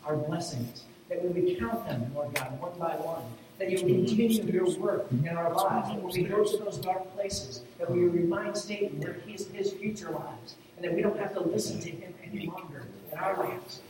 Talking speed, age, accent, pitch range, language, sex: 225 wpm, 40-59, American, 160-205 Hz, English, male